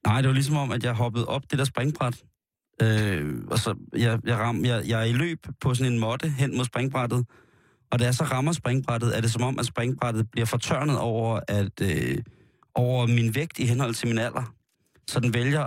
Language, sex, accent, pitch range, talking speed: Danish, male, native, 120-140 Hz, 225 wpm